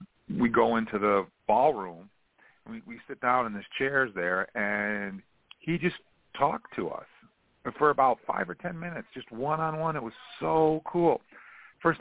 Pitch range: 95-155 Hz